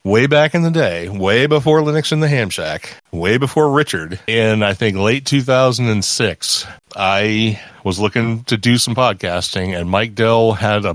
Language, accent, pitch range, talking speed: English, American, 95-120 Hz, 170 wpm